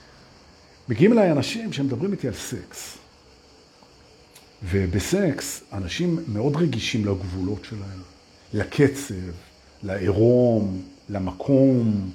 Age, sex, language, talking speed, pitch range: 50-69, male, Hebrew, 85 wpm, 105-165 Hz